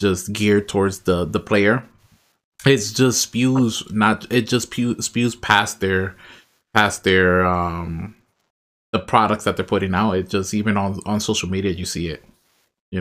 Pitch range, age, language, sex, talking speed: 100-120 Hz, 20-39, English, male, 160 wpm